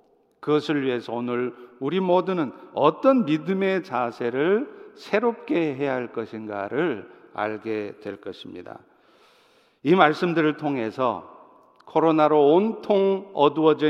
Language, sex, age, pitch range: Korean, male, 50-69, 135-215 Hz